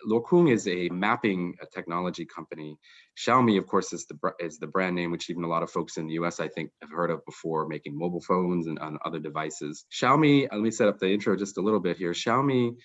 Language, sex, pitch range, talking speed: English, male, 90-110 Hz, 240 wpm